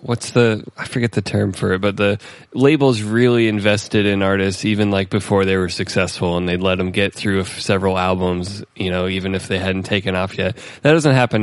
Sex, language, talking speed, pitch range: male, English, 215 wpm, 95-120 Hz